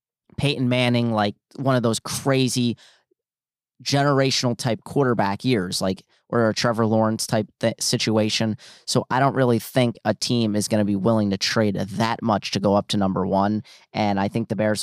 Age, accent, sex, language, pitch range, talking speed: 30-49, American, male, English, 100-125 Hz, 175 wpm